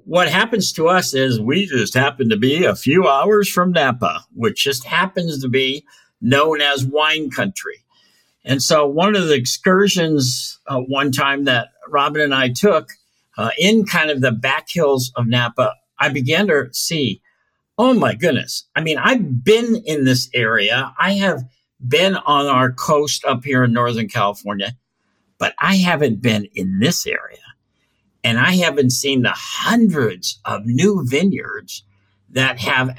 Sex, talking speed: male, 165 wpm